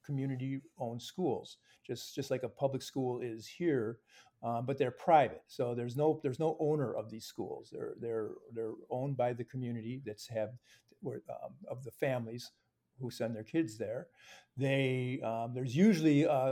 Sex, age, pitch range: male, 50-69, 120-150 Hz